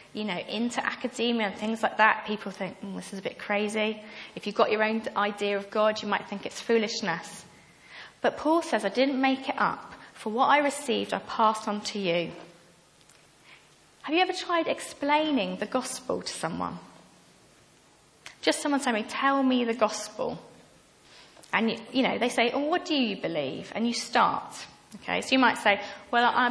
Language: English